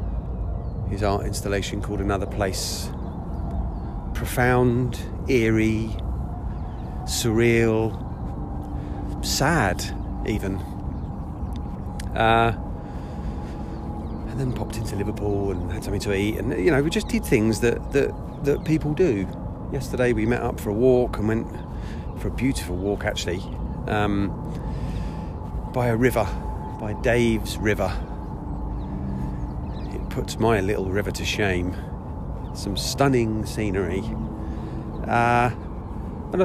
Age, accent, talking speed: 40-59, British, 110 wpm